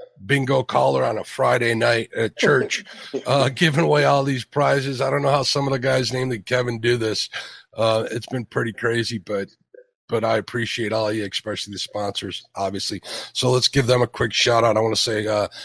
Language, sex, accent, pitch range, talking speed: English, male, American, 120-145 Hz, 205 wpm